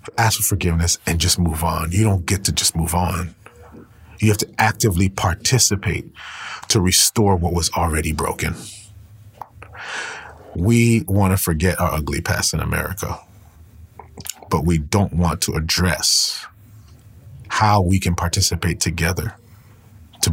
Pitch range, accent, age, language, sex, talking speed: 90-115 Hz, American, 40-59, English, male, 135 wpm